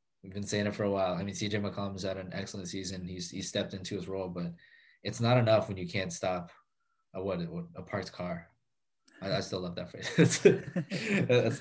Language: English